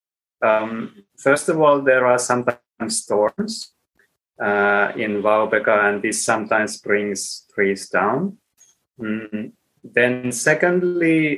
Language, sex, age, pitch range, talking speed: Finnish, male, 30-49, 120-155 Hz, 105 wpm